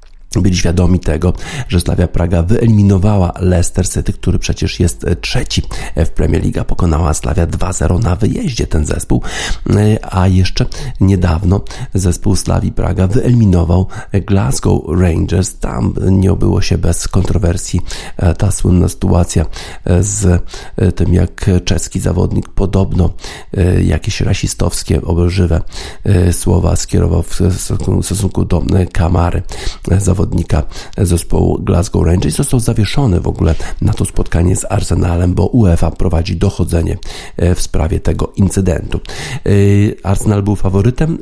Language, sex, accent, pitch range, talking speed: Polish, male, native, 90-100 Hz, 115 wpm